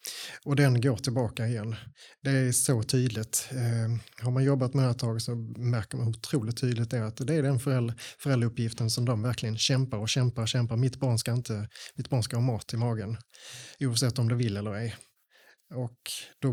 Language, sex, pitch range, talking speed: Swedish, male, 115-130 Hz, 200 wpm